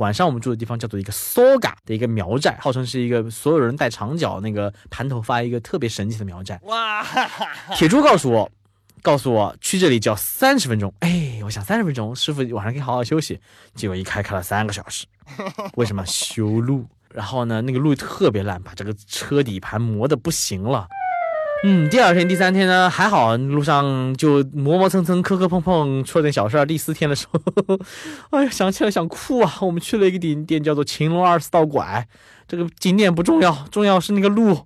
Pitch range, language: 105-175 Hz, Chinese